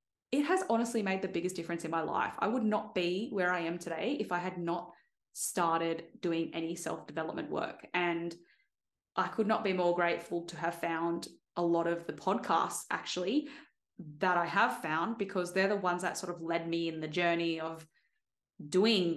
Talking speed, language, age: 190 wpm, English, 20-39